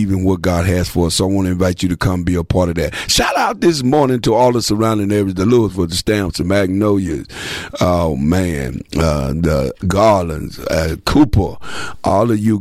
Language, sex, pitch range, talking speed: English, male, 90-105 Hz, 210 wpm